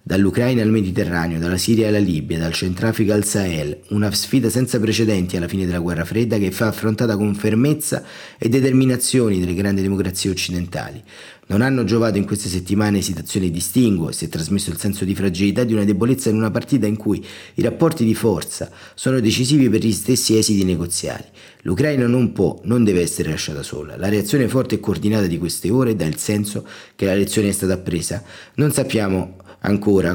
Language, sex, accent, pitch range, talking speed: Italian, male, native, 90-115 Hz, 185 wpm